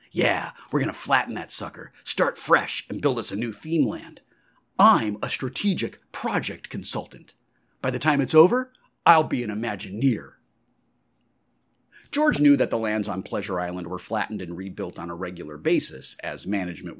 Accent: American